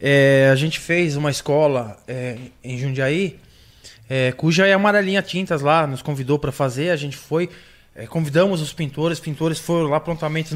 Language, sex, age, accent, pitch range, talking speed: Portuguese, male, 20-39, Brazilian, 145-195 Hz, 180 wpm